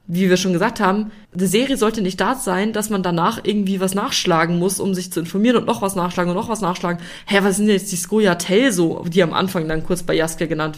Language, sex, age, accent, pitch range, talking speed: German, female, 20-39, German, 175-230 Hz, 255 wpm